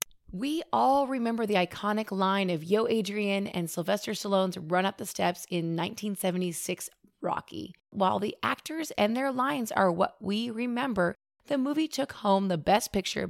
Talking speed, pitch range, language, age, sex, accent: 165 wpm, 180-230 Hz, English, 30-49, female, American